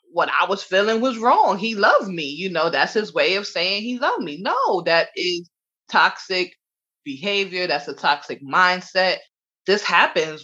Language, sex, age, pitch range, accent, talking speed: English, female, 20-39, 160-255 Hz, American, 170 wpm